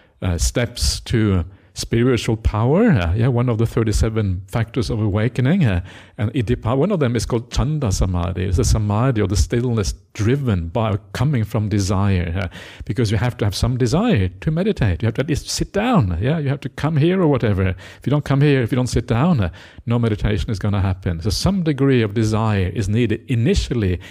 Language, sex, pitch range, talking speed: English, male, 95-120 Hz, 210 wpm